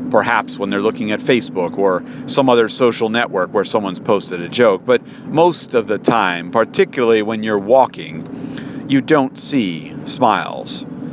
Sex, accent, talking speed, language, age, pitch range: male, American, 155 wpm, English, 50-69, 120-145 Hz